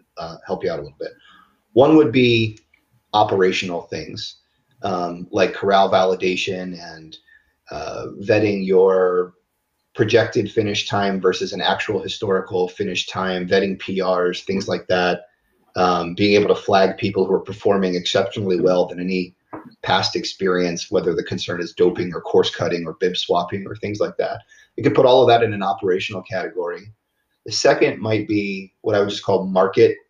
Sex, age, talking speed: male, 30-49, 165 wpm